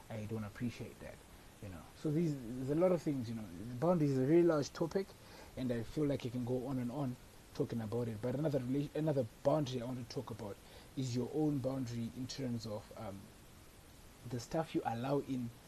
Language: English